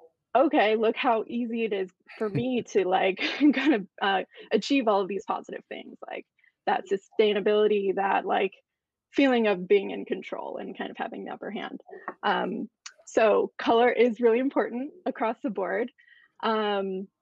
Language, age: English, 20-39